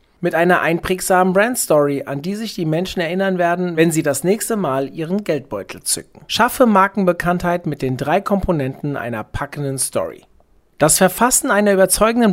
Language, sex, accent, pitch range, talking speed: German, male, German, 150-200 Hz, 155 wpm